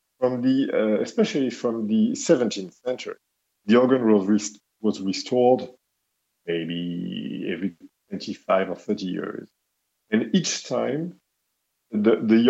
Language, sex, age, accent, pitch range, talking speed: English, male, 50-69, French, 95-145 Hz, 120 wpm